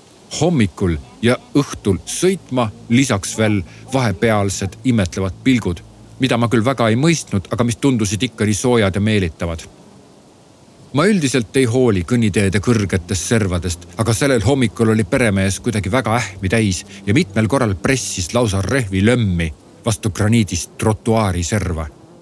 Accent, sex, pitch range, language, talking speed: Finnish, male, 100-125 Hz, Czech, 130 wpm